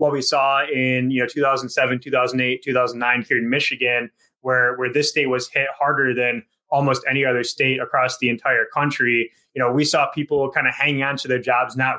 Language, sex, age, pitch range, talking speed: English, male, 20-39, 125-145 Hz, 205 wpm